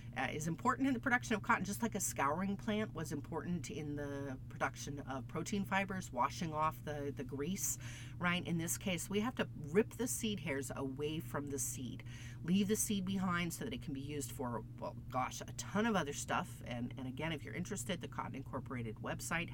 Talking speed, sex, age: 210 wpm, female, 40-59